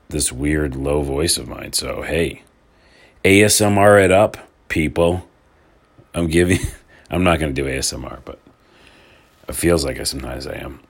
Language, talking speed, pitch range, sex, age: English, 155 wpm, 75-100 Hz, male, 40-59